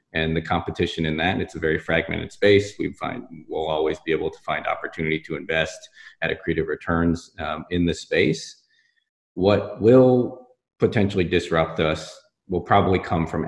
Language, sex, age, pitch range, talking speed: English, male, 30-49, 80-95 Hz, 165 wpm